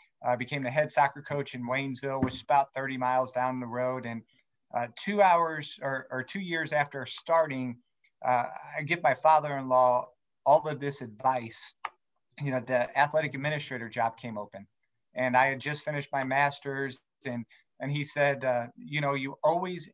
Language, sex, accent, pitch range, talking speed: English, male, American, 125-150 Hz, 180 wpm